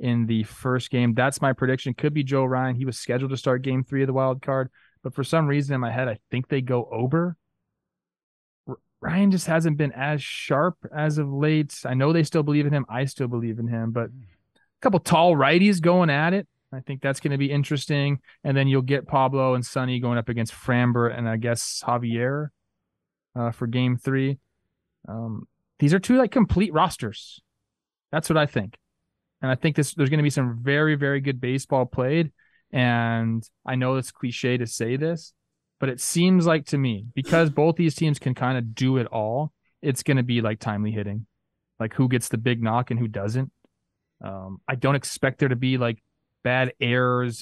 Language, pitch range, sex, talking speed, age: English, 115-140 Hz, male, 205 wpm, 20-39